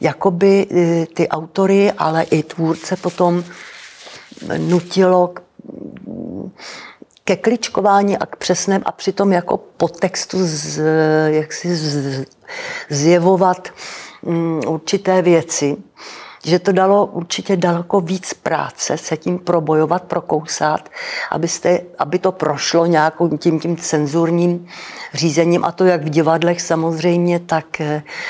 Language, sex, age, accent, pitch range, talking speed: Czech, female, 60-79, native, 155-180 Hz, 110 wpm